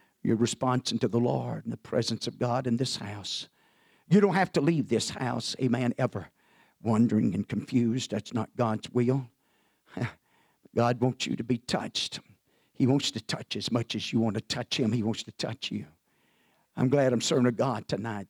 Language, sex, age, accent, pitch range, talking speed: English, male, 50-69, American, 110-130 Hz, 195 wpm